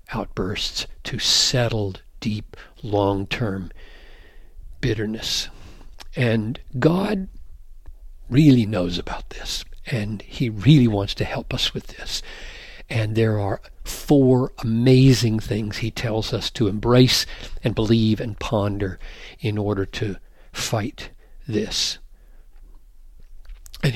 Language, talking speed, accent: English, 105 wpm, American